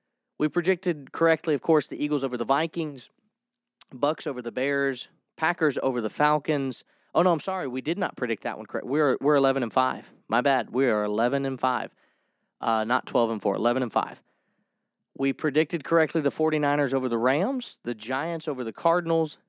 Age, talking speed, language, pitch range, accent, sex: 30-49, 195 wpm, English, 115-165 Hz, American, male